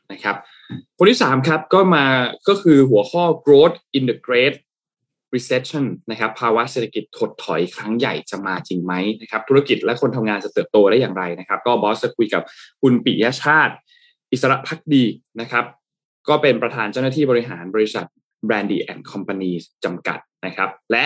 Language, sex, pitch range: Thai, male, 105-135 Hz